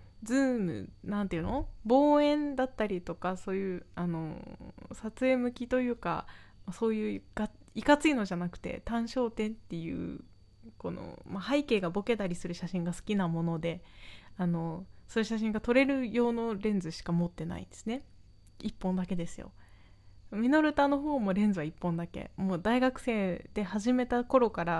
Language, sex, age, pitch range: Japanese, female, 20-39, 180-265 Hz